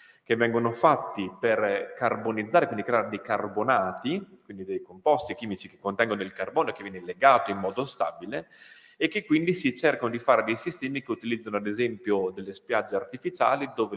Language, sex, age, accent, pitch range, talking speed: Italian, male, 30-49, native, 100-135 Hz, 170 wpm